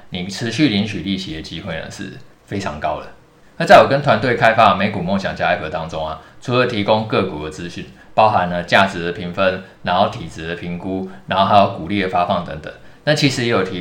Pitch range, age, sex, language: 90-115 Hz, 20-39, male, Chinese